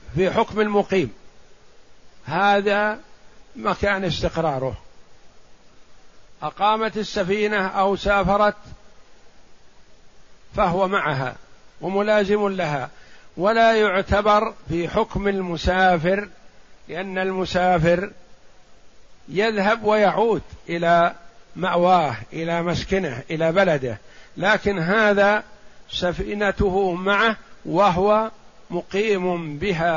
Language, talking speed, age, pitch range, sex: Arabic, 70 wpm, 50-69, 170-205 Hz, male